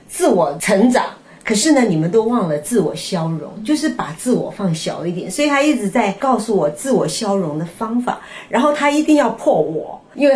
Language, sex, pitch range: Chinese, female, 185-255 Hz